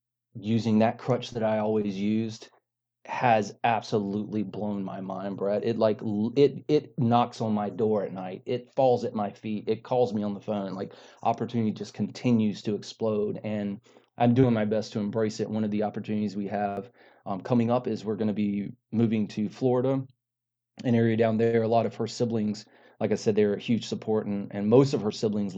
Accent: American